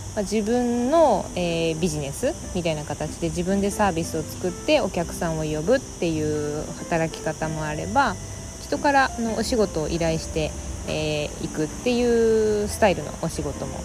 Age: 20-39